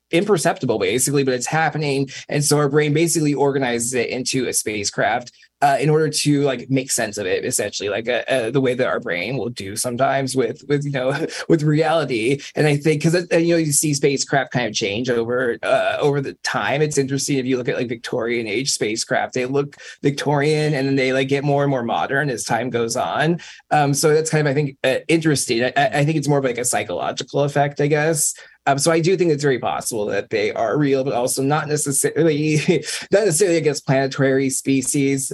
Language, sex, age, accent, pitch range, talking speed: English, male, 20-39, American, 135-160 Hz, 210 wpm